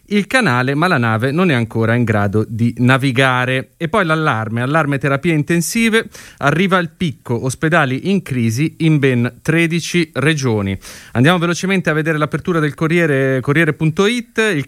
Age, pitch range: 30-49, 125-170 Hz